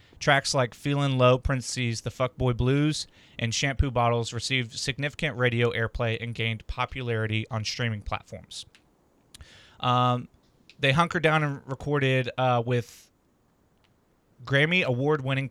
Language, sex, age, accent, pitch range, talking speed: English, male, 30-49, American, 115-135 Hz, 125 wpm